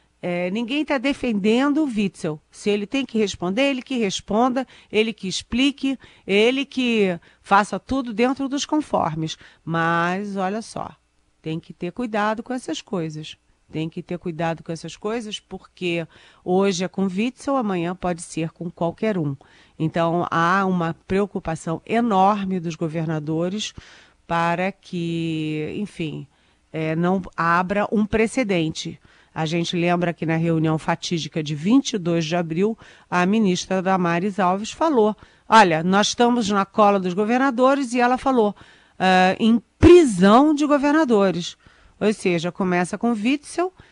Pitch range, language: 170-225 Hz, Portuguese